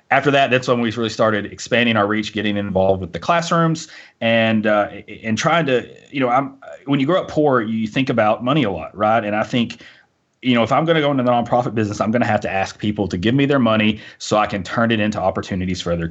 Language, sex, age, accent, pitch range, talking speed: English, male, 30-49, American, 100-130 Hz, 260 wpm